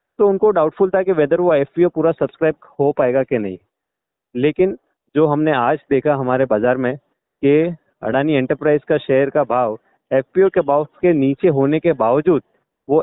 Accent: native